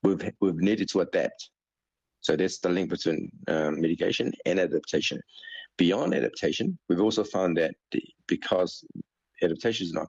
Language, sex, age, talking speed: English, male, 50-69, 150 wpm